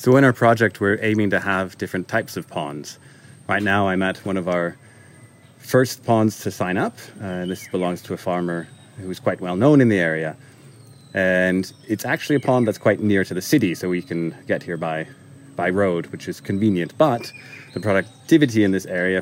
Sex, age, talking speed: male, 30-49, 205 wpm